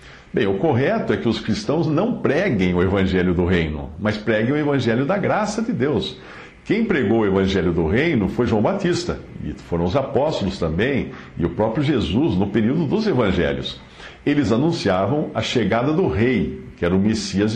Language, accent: English, Brazilian